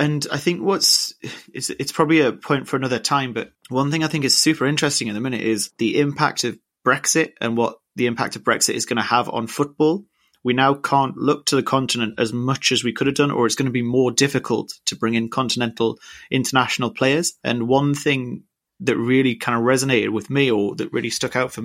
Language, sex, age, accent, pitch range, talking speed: English, male, 30-49, British, 115-135 Hz, 230 wpm